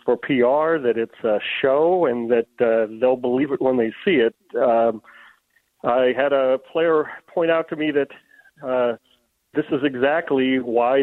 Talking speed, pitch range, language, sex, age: 170 wpm, 120-145 Hz, English, male, 40-59